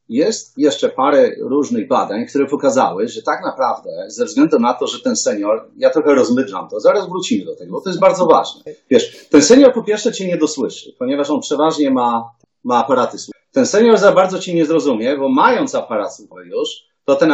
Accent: native